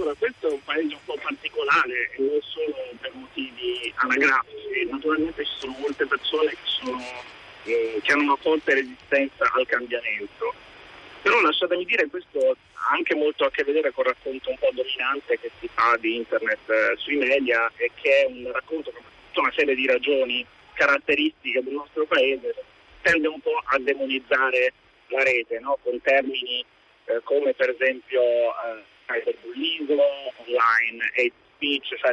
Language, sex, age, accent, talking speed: Italian, male, 30-49, native, 165 wpm